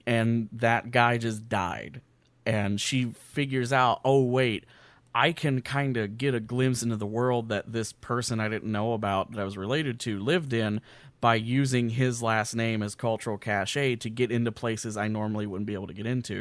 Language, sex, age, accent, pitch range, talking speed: English, male, 30-49, American, 105-125 Hz, 200 wpm